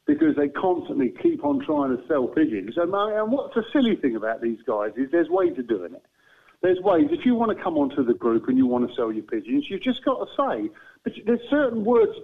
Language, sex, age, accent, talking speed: English, male, 50-69, British, 250 wpm